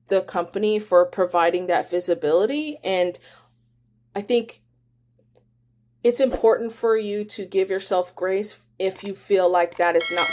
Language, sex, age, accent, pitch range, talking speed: English, female, 30-49, American, 170-205 Hz, 140 wpm